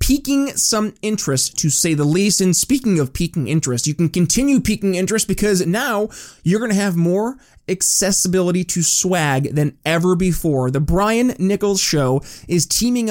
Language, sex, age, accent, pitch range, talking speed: English, male, 20-39, American, 160-215 Hz, 165 wpm